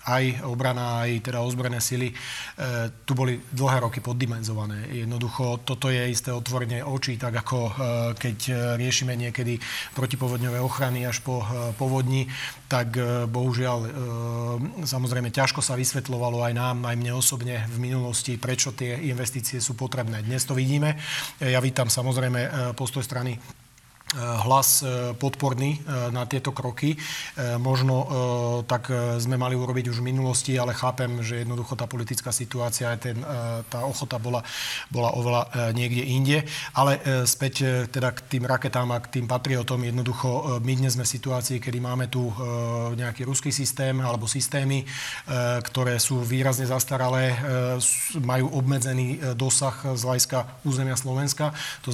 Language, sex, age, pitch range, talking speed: Slovak, male, 40-59, 120-130 Hz, 135 wpm